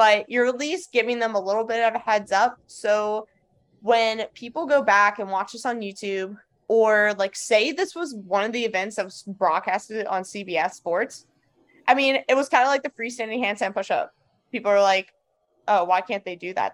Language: English